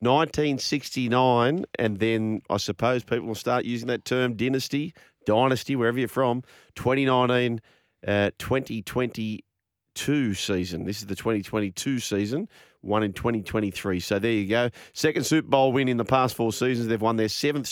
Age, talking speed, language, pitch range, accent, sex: 40-59, 150 wpm, English, 110-135 Hz, Australian, male